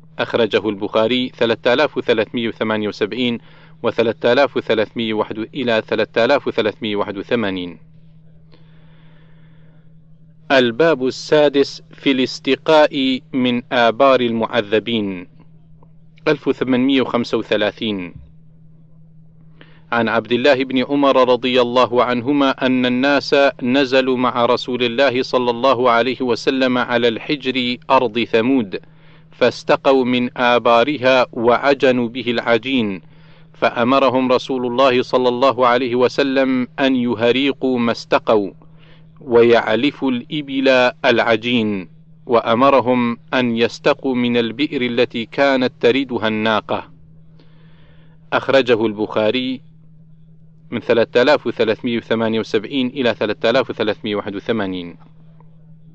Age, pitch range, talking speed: 40-59, 120-155 Hz, 75 wpm